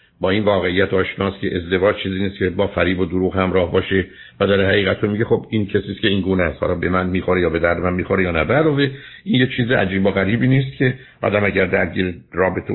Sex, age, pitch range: male, 60-79, 95-115 Hz